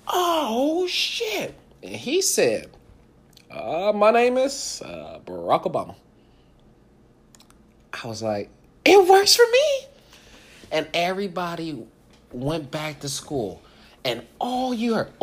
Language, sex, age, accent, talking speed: English, male, 30-49, American, 115 wpm